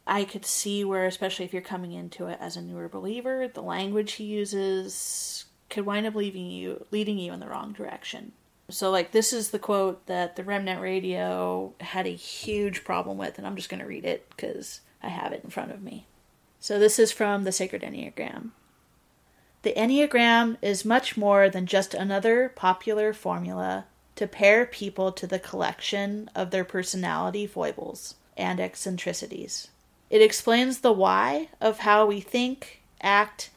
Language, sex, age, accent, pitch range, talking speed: English, female, 30-49, American, 185-220 Hz, 175 wpm